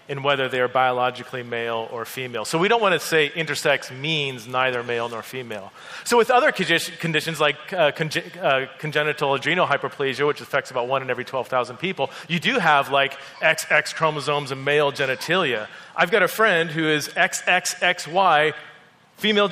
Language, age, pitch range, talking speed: English, 30-49, 130-170 Hz, 170 wpm